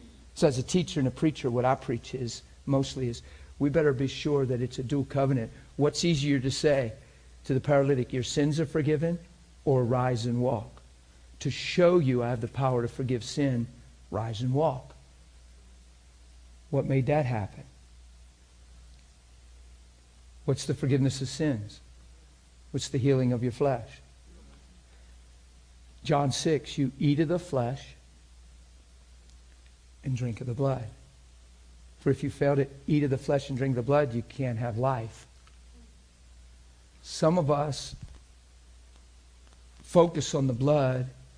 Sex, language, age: male, English, 50-69